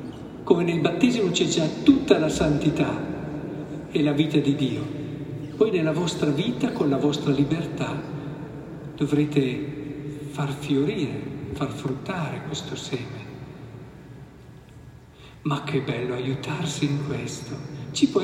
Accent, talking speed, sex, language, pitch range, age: native, 120 wpm, male, Italian, 140-175 Hz, 50-69